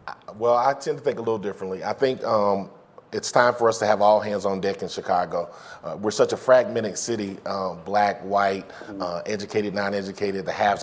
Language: English